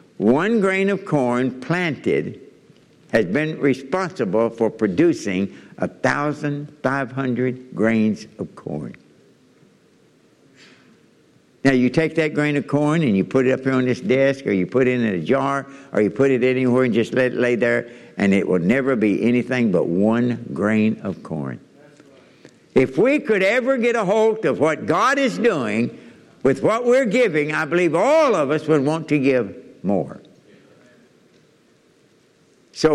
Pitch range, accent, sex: 115-155 Hz, American, male